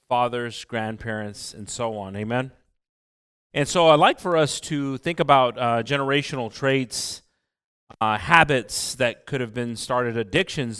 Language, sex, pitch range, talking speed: English, male, 115-150 Hz, 145 wpm